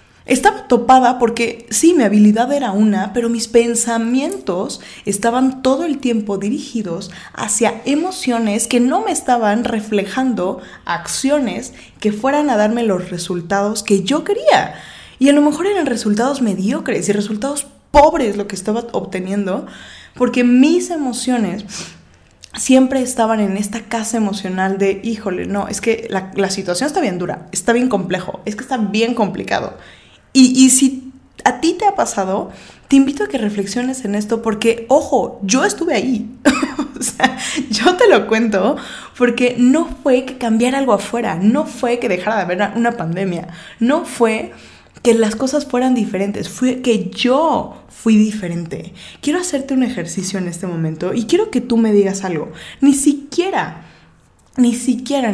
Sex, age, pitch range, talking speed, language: female, 20-39, 205-265 Hz, 160 wpm, Spanish